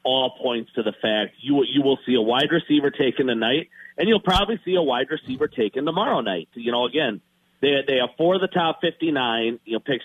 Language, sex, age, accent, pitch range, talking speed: English, male, 40-59, American, 130-175 Hz, 235 wpm